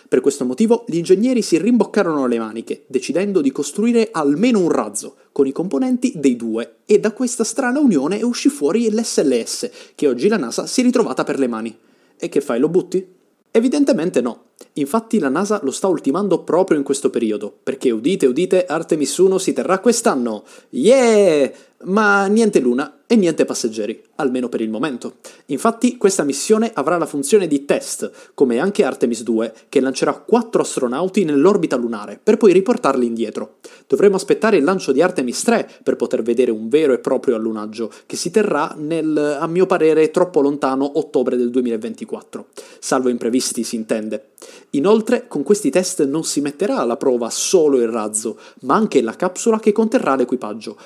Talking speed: 175 wpm